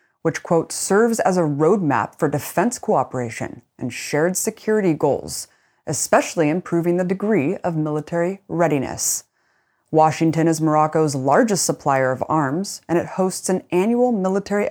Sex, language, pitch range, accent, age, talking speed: female, English, 155-200 Hz, American, 20-39, 135 wpm